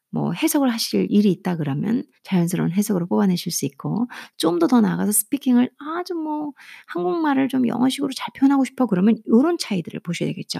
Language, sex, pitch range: Korean, female, 195-290 Hz